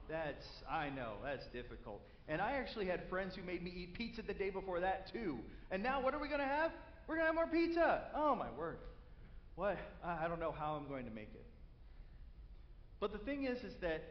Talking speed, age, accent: 225 wpm, 40-59, American